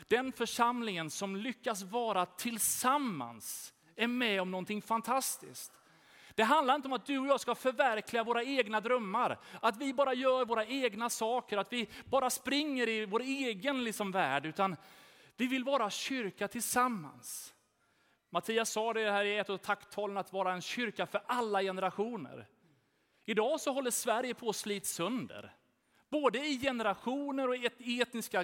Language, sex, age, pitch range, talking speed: Swedish, male, 30-49, 200-250 Hz, 160 wpm